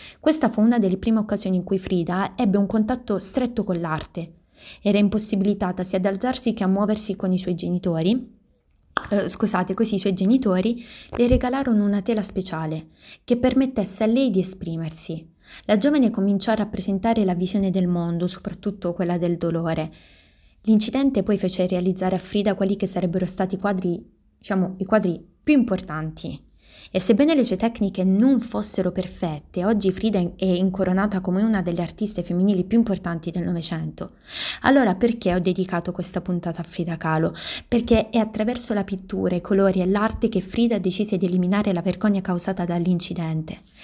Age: 20-39